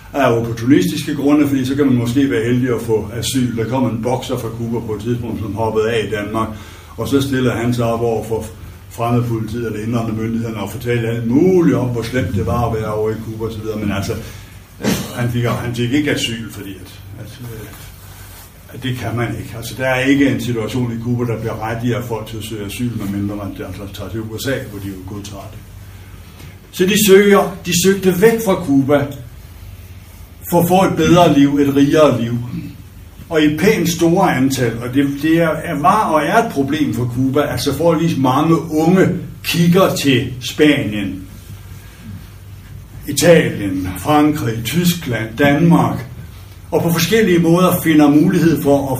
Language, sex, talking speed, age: Danish, male, 185 wpm, 60-79